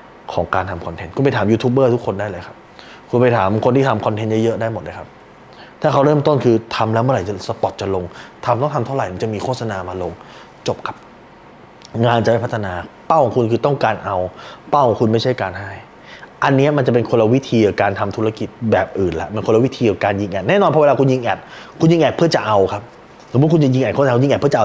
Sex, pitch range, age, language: male, 105-130 Hz, 20-39, Thai